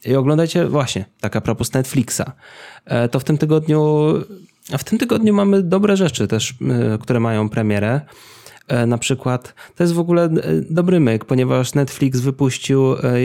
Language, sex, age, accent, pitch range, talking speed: Polish, male, 20-39, native, 120-140 Hz, 145 wpm